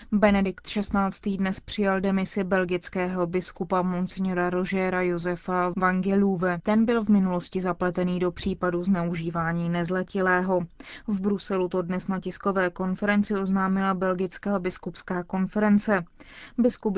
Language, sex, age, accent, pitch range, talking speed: Czech, female, 20-39, native, 180-200 Hz, 115 wpm